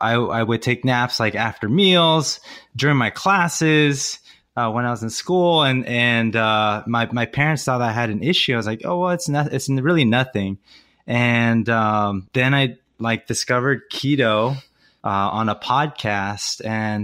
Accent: American